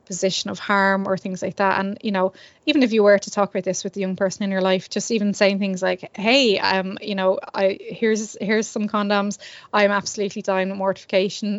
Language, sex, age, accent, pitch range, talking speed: English, female, 20-39, Irish, 190-210 Hz, 225 wpm